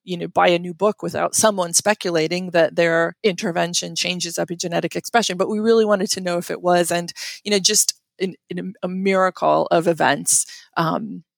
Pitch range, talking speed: 175-215 Hz, 185 wpm